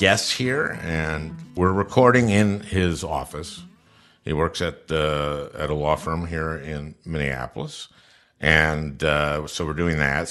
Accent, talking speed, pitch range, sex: American, 145 wpm, 80-105 Hz, male